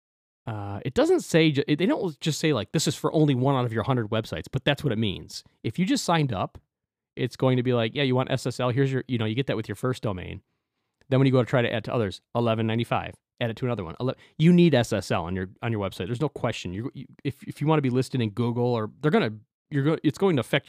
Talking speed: 280 wpm